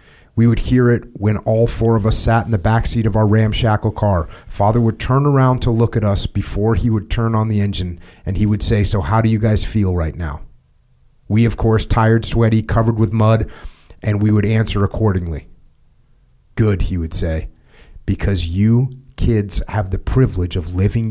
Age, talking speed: 30-49, 195 wpm